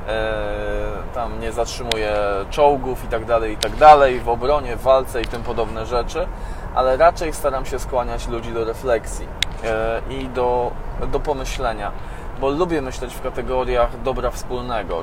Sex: male